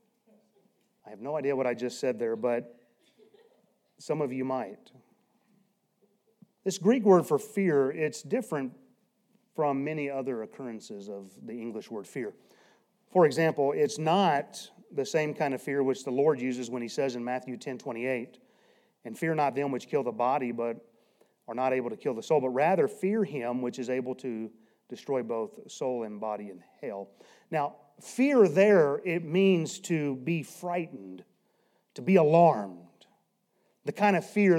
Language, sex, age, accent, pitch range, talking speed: English, male, 30-49, American, 125-200 Hz, 165 wpm